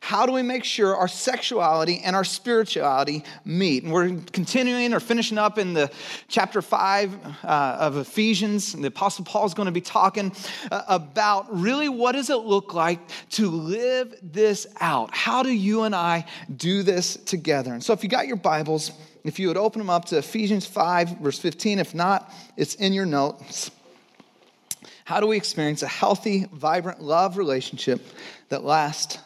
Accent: American